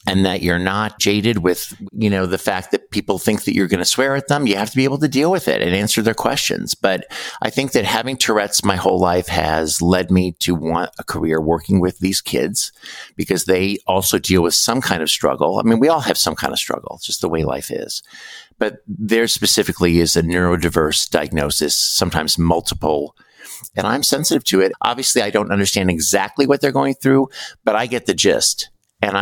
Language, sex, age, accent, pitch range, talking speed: English, male, 50-69, American, 85-105 Hz, 215 wpm